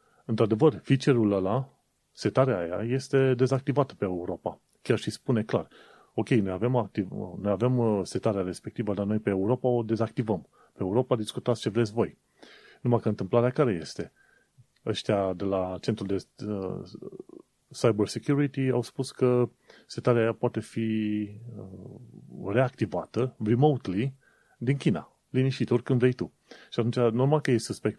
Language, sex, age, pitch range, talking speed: Romanian, male, 30-49, 100-125 Hz, 135 wpm